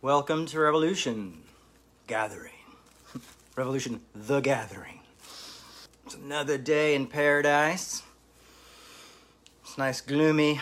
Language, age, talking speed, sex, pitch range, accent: English, 40-59, 90 wpm, male, 120-145 Hz, American